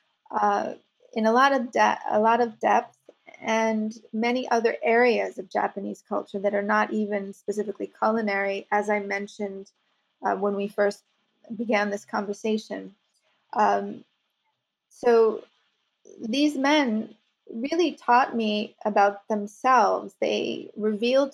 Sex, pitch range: female, 210-240 Hz